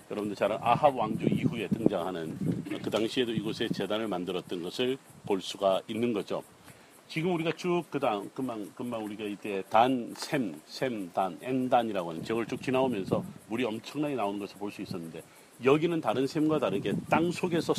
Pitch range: 120-160 Hz